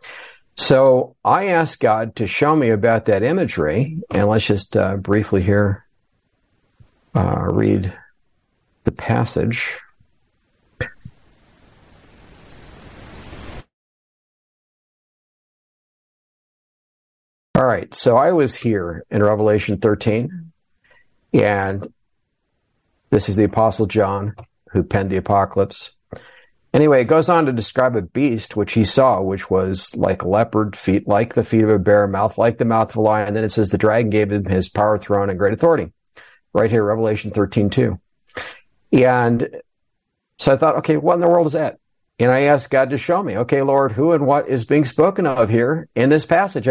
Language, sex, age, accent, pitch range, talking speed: English, male, 50-69, American, 100-135 Hz, 150 wpm